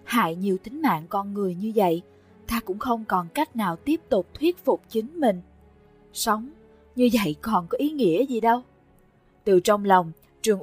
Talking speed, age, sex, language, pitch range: 185 wpm, 20-39, female, English, 180-235 Hz